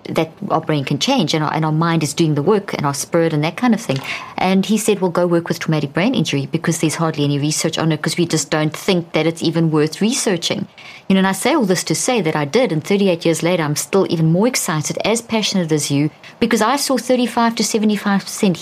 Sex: female